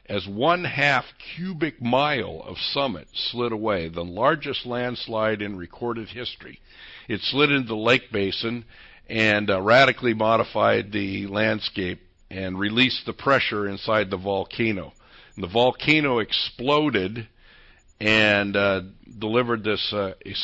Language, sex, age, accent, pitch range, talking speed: English, male, 60-79, American, 100-120 Hz, 120 wpm